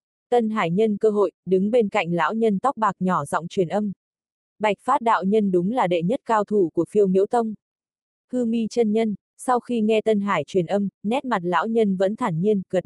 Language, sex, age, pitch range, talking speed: Vietnamese, female, 20-39, 180-225 Hz, 230 wpm